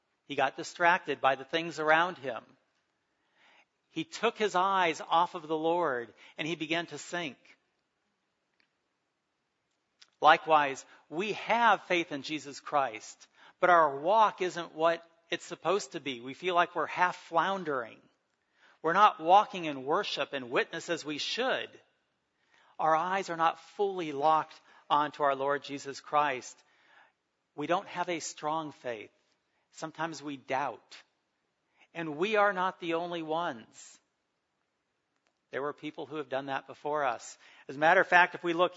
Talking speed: 150 wpm